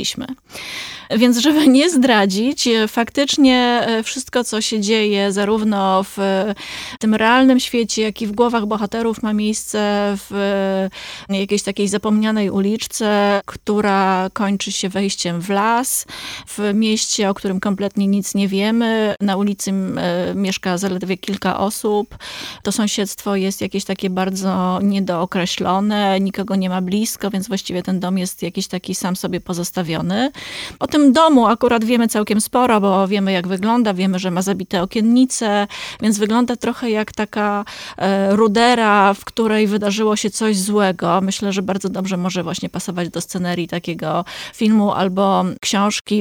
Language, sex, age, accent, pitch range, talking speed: Polish, female, 20-39, native, 190-220 Hz, 140 wpm